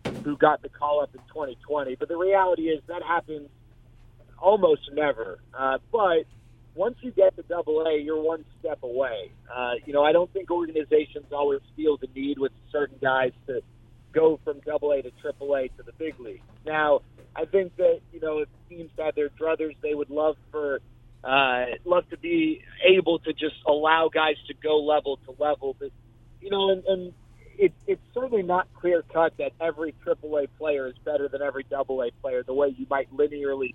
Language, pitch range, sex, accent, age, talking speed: English, 135-170 Hz, male, American, 30-49, 185 wpm